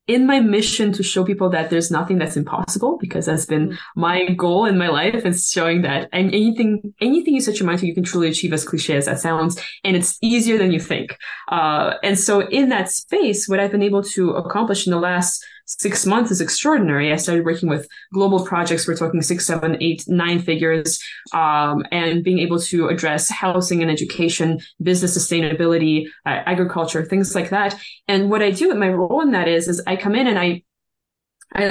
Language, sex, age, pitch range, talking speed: English, female, 20-39, 175-225 Hz, 210 wpm